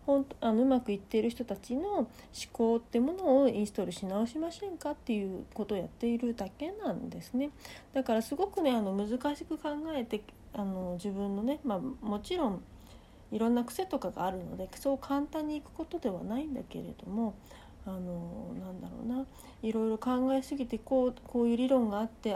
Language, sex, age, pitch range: Japanese, female, 40-59, 210-285 Hz